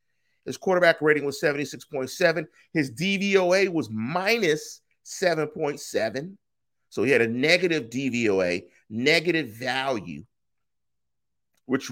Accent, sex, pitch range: American, male, 135-180 Hz